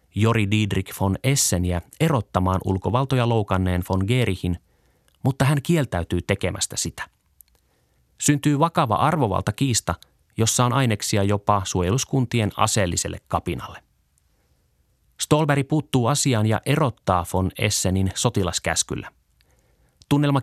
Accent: native